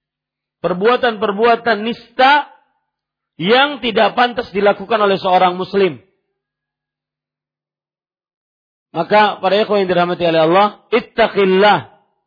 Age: 50-69